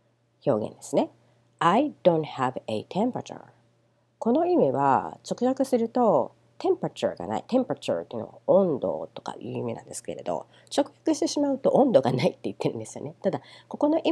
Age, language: 40-59, Japanese